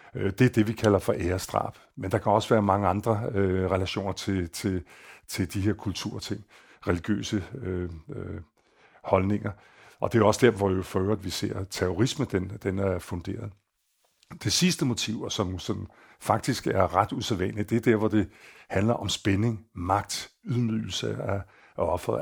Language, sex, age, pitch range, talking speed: Danish, male, 50-69, 95-110 Hz, 175 wpm